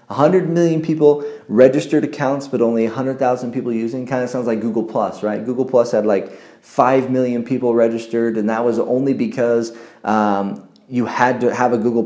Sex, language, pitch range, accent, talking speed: male, English, 110-130 Hz, American, 185 wpm